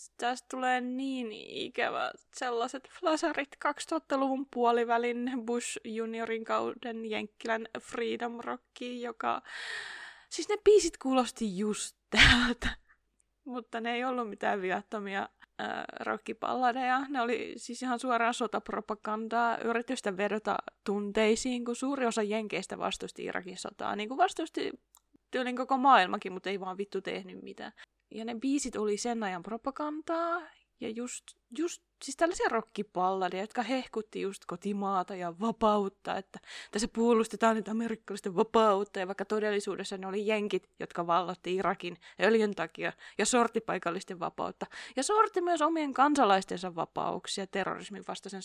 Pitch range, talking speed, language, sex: 195-255 Hz, 130 wpm, Finnish, female